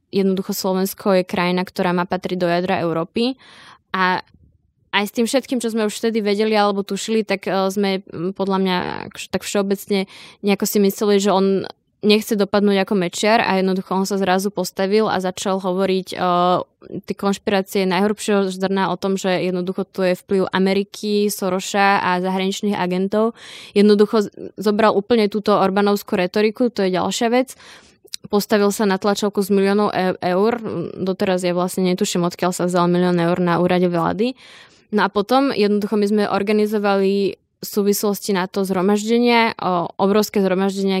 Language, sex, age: Slovak, female, 20-39